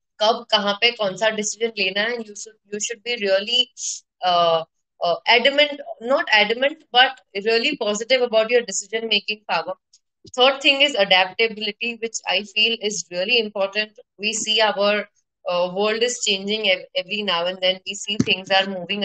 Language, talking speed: Hindi, 85 wpm